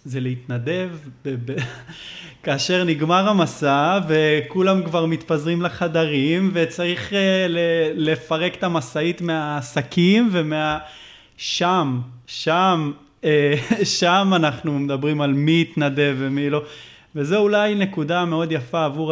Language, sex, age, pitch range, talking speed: Hebrew, male, 20-39, 140-170 Hz, 105 wpm